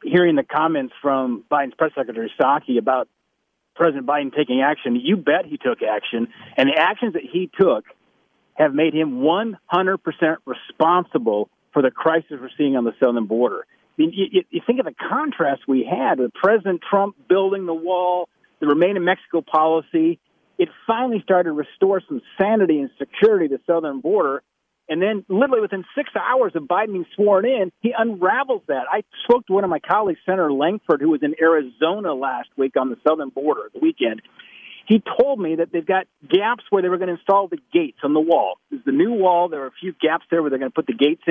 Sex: male